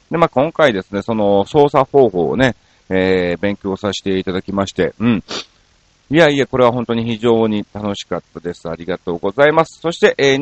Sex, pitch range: male, 95-140 Hz